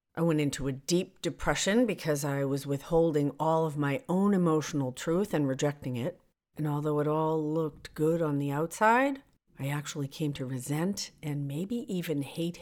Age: 50-69